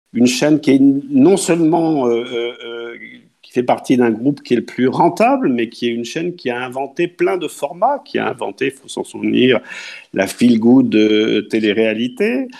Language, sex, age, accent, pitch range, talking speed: French, male, 50-69, French, 115-145 Hz, 185 wpm